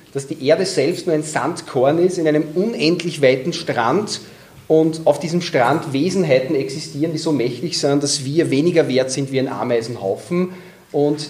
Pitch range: 140-175 Hz